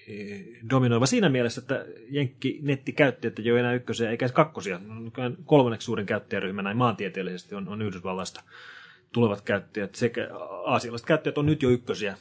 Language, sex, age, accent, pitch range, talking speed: Finnish, male, 30-49, native, 115-135 Hz, 135 wpm